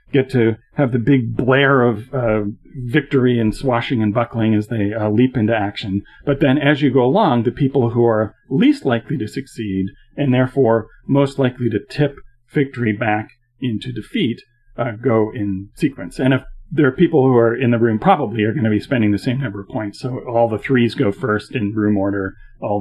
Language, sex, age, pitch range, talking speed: English, male, 40-59, 110-135 Hz, 205 wpm